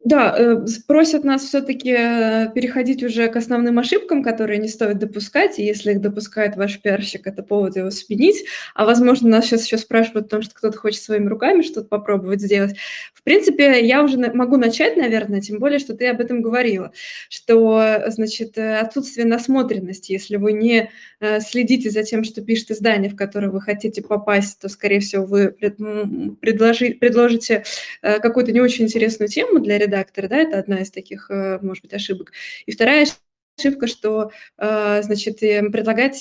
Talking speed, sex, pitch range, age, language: 160 wpm, female, 205-240 Hz, 20-39, Russian